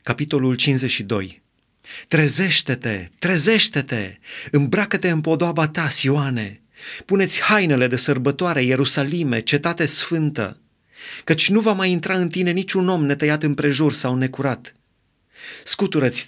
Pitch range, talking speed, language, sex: 125-155 Hz, 110 wpm, Romanian, male